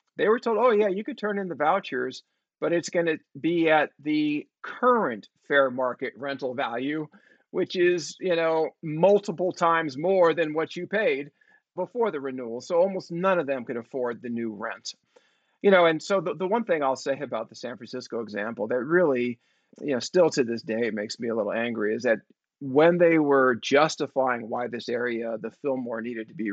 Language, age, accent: English, 40-59, American